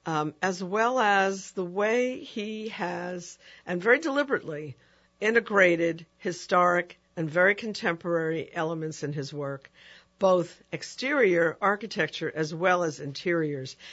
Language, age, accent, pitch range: English, 60-79, American, 160-195 Hz